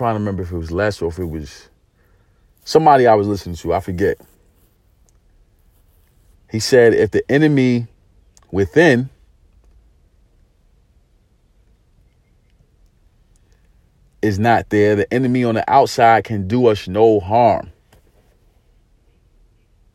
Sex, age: male, 40-59